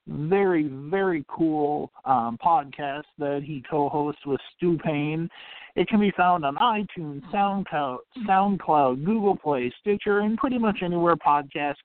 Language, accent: English, American